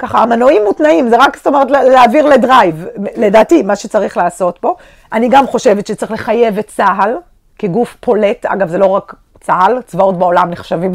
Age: 40-59